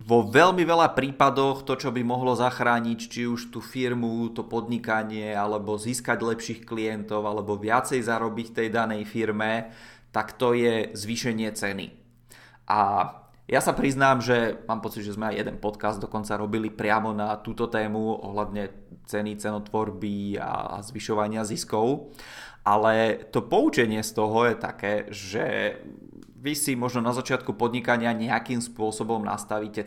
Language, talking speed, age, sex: Czech, 145 wpm, 20-39, male